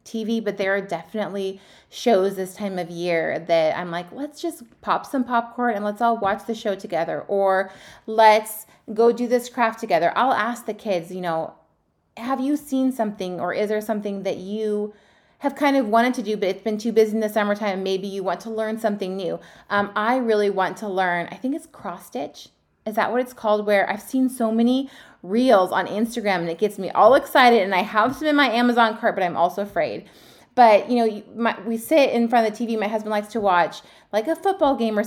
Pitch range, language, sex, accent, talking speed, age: 195-235 Hz, English, female, American, 225 wpm, 30-49